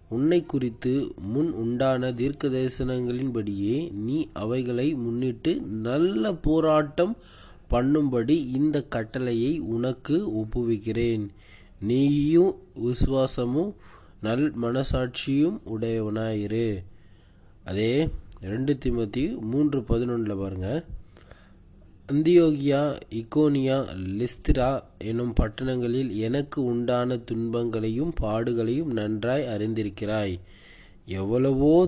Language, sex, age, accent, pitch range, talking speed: Tamil, male, 20-39, native, 105-135 Hz, 75 wpm